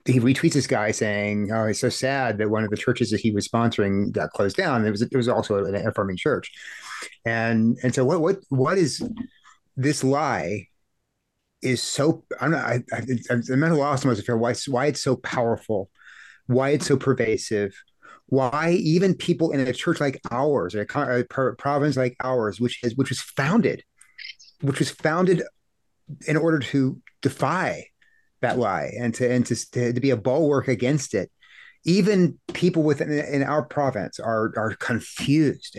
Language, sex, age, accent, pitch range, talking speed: English, male, 30-49, American, 110-140 Hz, 175 wpm